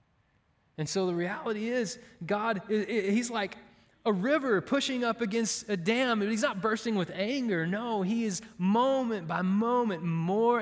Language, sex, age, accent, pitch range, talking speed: English, male, 20-39, American, 145-205 Hz, 155 wpm